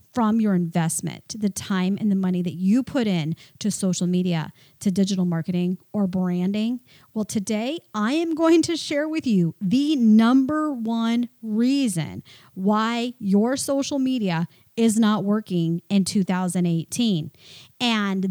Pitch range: 185-255 Hz